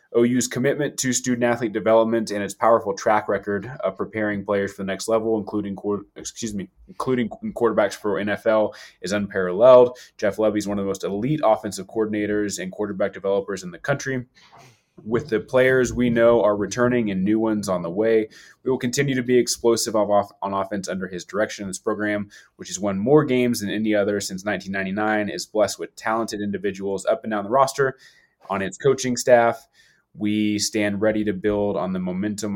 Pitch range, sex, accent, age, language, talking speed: 100-115 Hz, male, American, 20-39, English, 185 wpm